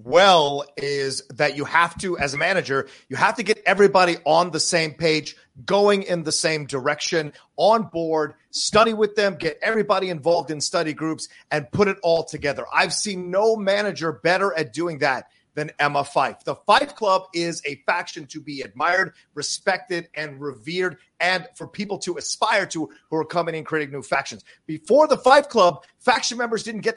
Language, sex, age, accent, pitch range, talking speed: English, male, 40-59, American, 155-195 Hz, 185 wpm